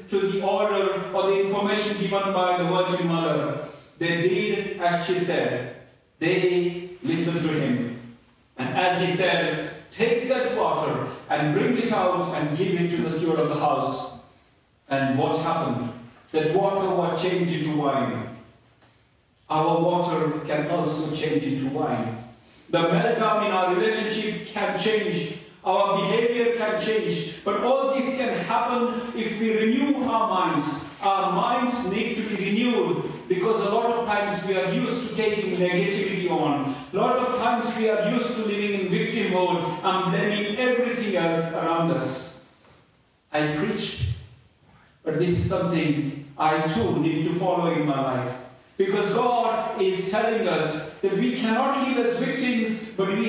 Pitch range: 155-215 Hz